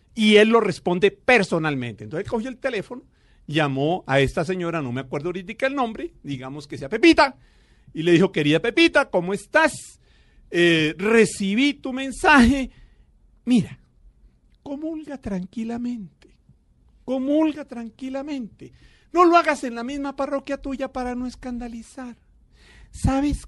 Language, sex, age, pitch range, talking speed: Spanish, male, 50-69, 155-260 Hz, 130 wpm